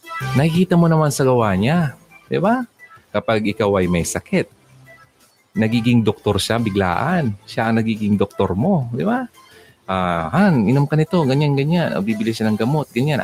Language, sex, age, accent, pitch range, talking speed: Filipino, male, 30-49, native, 105-160 Hz, 165 wpm